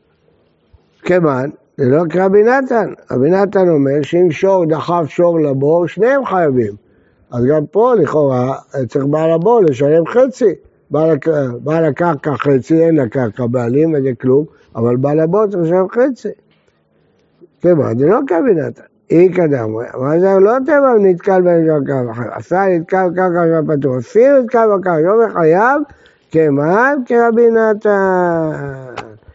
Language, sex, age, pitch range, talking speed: Hebrew, male, 60-79, 135-180 Hz, 135 wpm